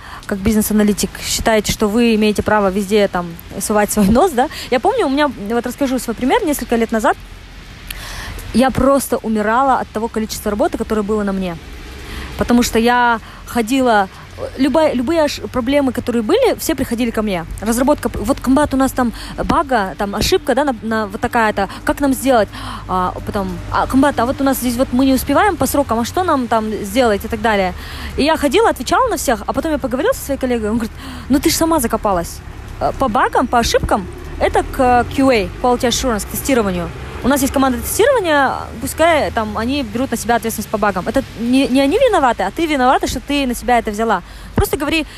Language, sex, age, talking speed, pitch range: Russian, female, 20-39, 195 wpm, 215-275 Hz